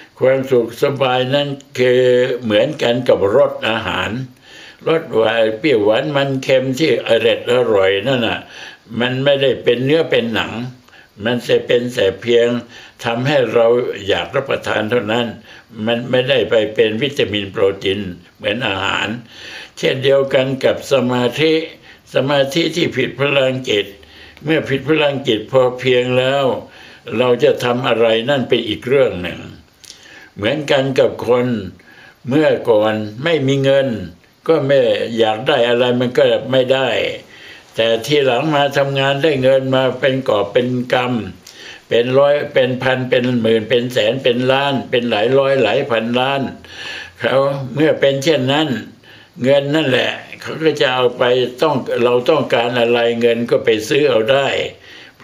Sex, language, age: male, Thai, 60-79